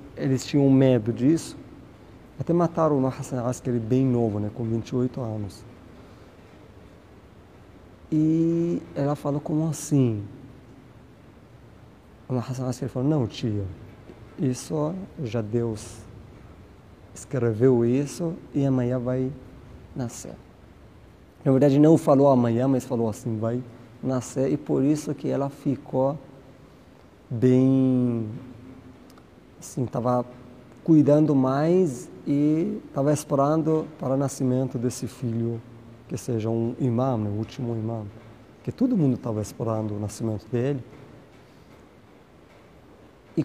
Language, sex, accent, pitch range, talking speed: Portuguese, male, Brazilian, 115-140 Hz, 110 wpm